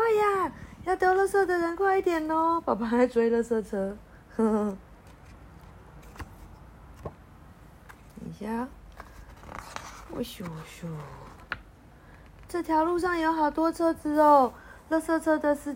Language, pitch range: Chinese, 205-320 Hz